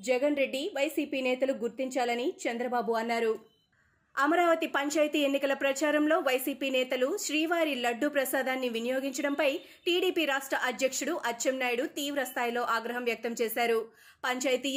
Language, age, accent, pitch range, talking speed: Telugu, 30-49, native, 245-290 Hz, 105 wpm